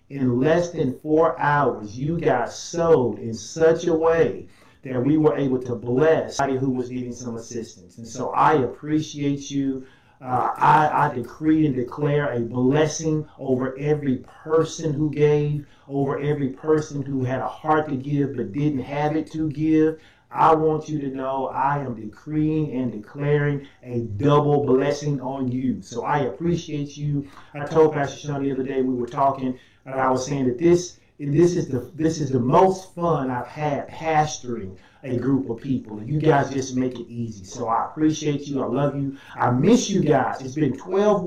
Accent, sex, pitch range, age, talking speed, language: American, male, 130-155 Hz, 30-49, 185 wpm, English